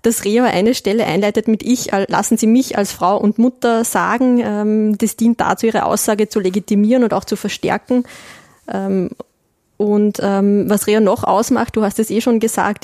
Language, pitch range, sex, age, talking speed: German, 180-215 Hz, female, 20-39, 175 wpm